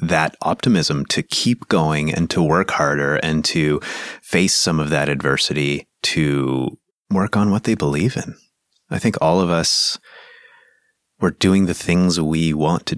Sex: male